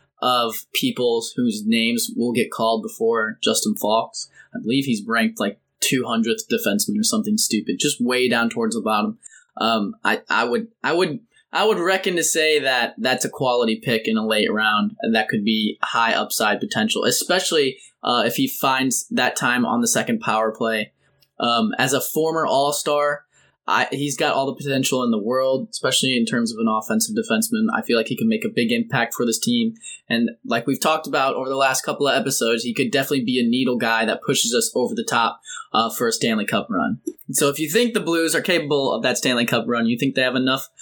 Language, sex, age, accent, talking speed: English, male, 10-29, American, 215 wpm